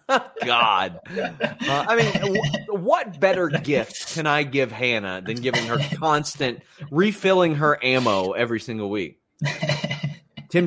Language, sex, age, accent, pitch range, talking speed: English, male, 30-49, American, 115-170 Hz, 130 wpm